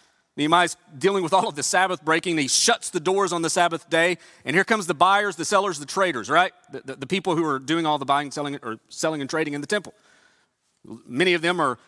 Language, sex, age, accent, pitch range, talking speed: English, male, 30-49, American, 140-185 Hz, 240 wpm